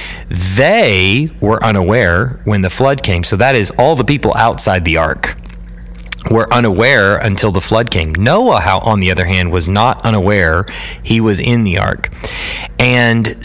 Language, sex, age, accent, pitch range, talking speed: English, male, 40-59, American, 95-115 Hz, 165 wpm